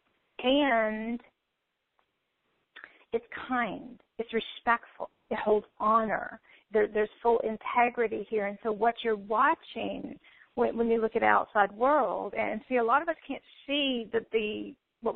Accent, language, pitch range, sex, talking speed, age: American, English, 205-235 Hz, female, 145 wpm, 40-59